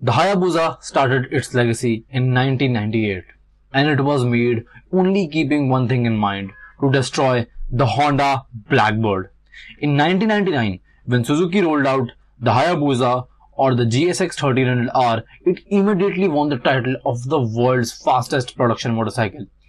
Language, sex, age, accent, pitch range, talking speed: English, male, 20-39, Indian, 125-155 Hz, 135 wpm